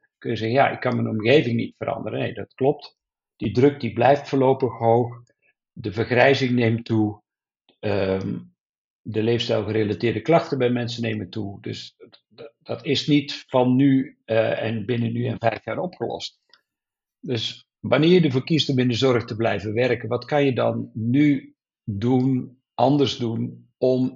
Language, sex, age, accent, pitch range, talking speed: Dutch, male, 50-69, Dutch, 115-130 Hz, 165 wpm